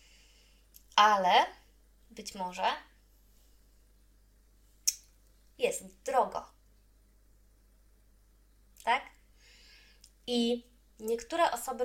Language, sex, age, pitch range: Polish, female, 20-39, 210-250 Hz